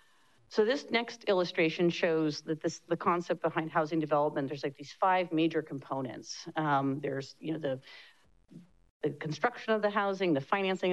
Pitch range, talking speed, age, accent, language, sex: 150-180 Hz, 165 wpm, 40-59, American, English, female